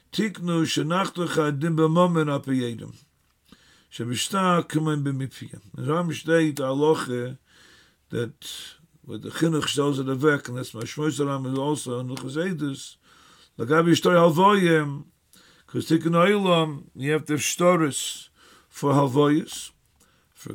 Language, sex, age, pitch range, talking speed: English, male, 50-69, 135-170 Hz, 40 wpm